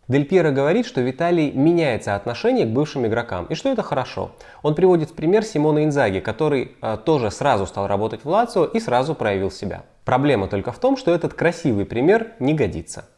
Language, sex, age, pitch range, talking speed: Russian, male, 20-39, 105-150 Hz, 190 wpm